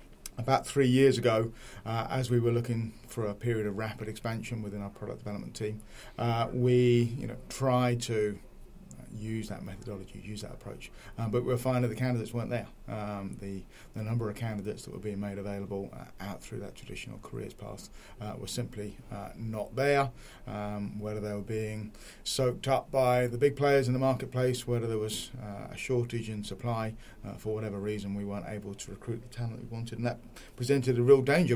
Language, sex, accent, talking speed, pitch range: English, male, British, 200 wpm, 105-120 Hz